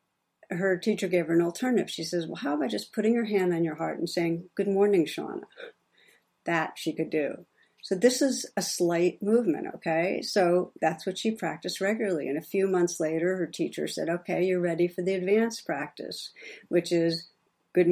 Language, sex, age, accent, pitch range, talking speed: English, female, 60-79, American, 165-205 Hz, 195 wpm